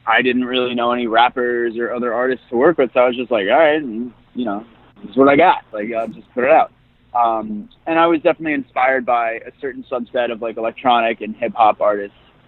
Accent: American